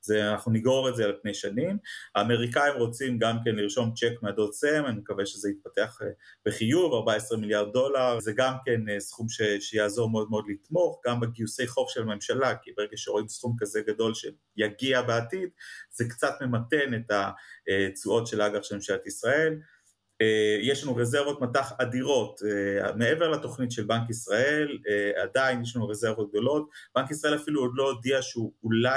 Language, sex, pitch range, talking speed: Hebrew, male, 110-140 Hz, 170 wpm